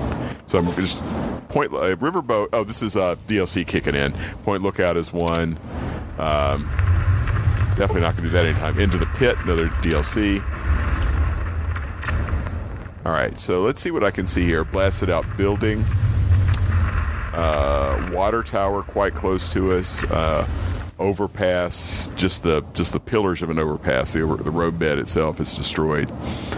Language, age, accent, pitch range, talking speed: English, 50-69, American, 80-95 Hz, 155 wpm